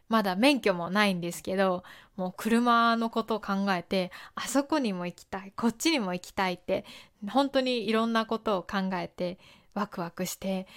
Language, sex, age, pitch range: Japanese, female, 20-39, 195-265 Hz